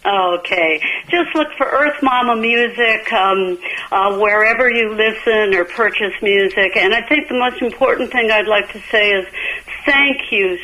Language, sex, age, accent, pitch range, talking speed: English, female, 60-79, American, 180-230 Hz, 165 wpm